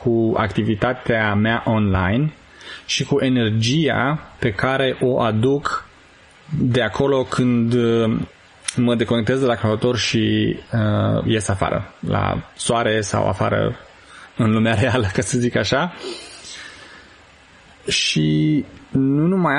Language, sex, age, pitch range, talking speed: Romanian, male, 20-39, 105-130 Hz, 115 wpm